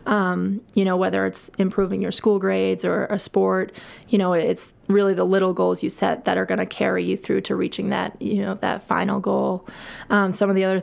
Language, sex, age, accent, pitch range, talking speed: English, female, 20-39, American, 180-200 Hz, 225 wpm